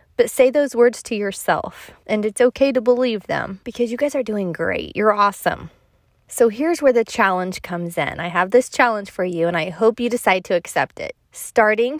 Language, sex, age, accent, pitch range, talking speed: English, female, 20-39, American, 185-245 Hz, 210 wpm